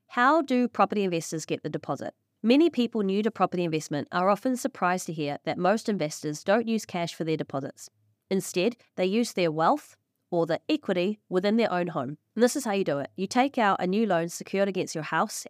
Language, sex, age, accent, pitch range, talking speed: English, female, 20-39, Australian, 160-220 Hz, 215 wpm